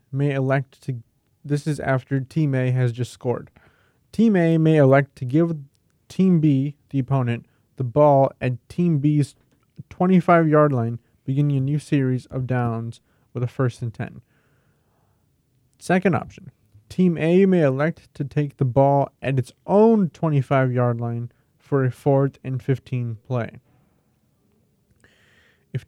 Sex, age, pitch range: male, 20-39, 120-140 Hz